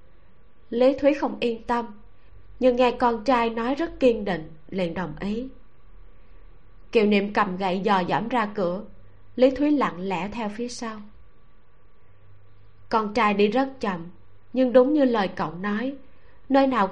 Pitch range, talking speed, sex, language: 175-245 Hz, 155 wpm, female, Vietnamese